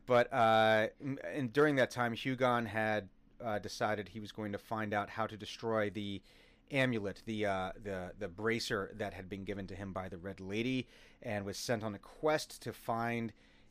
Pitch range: 95-120 Hz